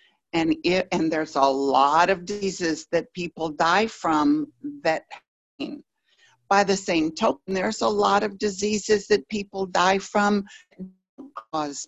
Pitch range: 165-220 Hz